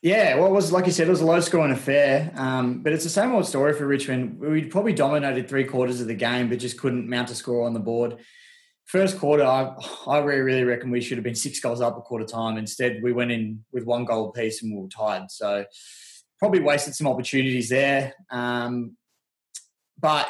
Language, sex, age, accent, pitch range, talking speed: English, male, 20-39, Australian, 120-145 Hz, 220 wpm